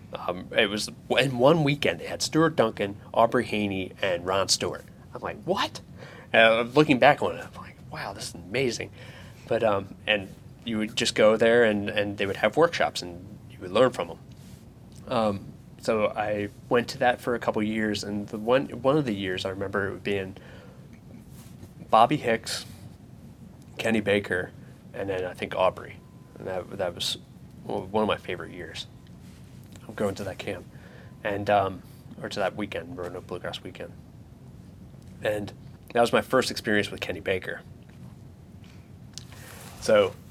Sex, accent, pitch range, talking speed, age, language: male, American, 100-120 Hz, 170 wpm, 20-39, English